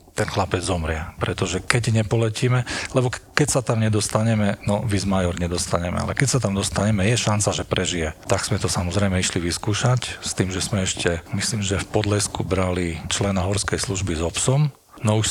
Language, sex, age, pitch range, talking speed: Slovak, male, 40-59, 90-110 Hz, 180 wpm